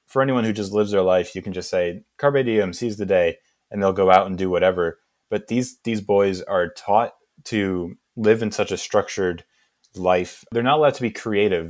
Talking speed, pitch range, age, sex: 215 wpm, 90-110 Hz, 20-39, male